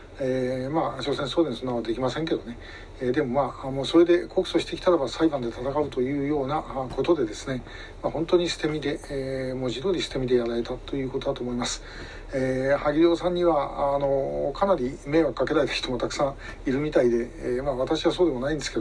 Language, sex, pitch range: Japanese, male, 120-160 Hz